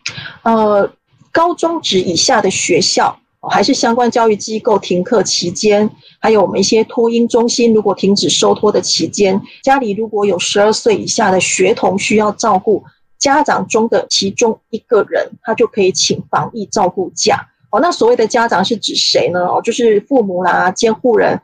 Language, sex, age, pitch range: Chinese, female, 30-49, 205-255 Hz